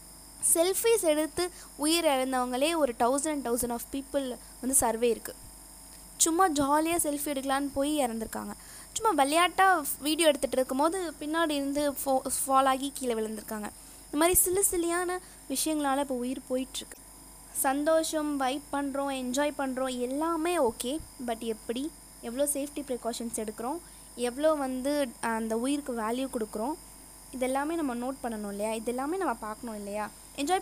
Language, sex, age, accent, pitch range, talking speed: Tamil, female, 20-39, native, 245-310 Hz, 130 wpm